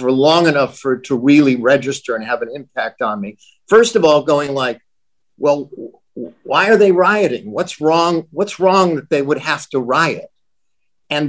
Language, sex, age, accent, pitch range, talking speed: English, male, 50-69, American, 130-165 Hz, 185 wpm